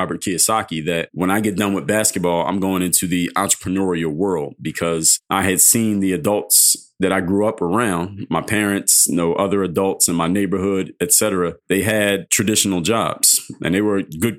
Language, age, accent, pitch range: English, 30-49, American, 95-110 Hz